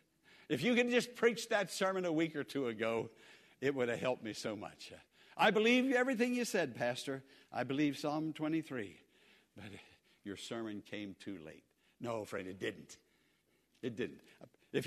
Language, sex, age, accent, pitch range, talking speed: English, male, 60-79, American, 135-200 Hz, 170 wpm